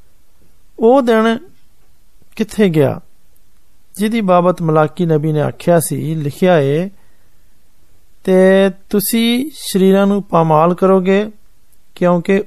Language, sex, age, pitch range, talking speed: Hindi, male, 50-69, 155-195 Hz, 70 wpm